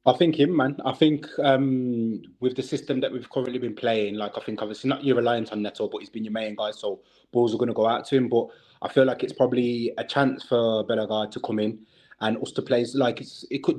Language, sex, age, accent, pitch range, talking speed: English, male, 20-39, British, 115-135 Hz, 255 wpm